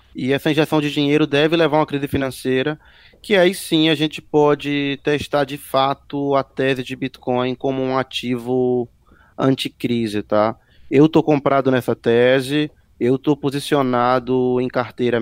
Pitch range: 125-145 Hz